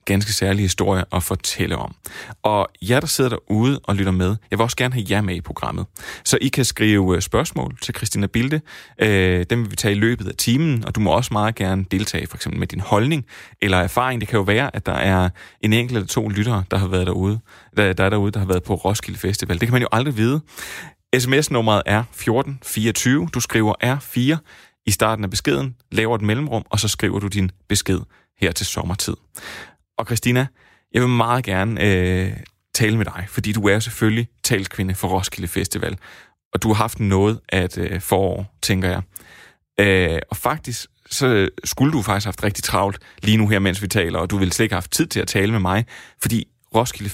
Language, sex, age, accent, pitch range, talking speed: Danish, male, 30-49, native, 95-120 Hz, 210 wpm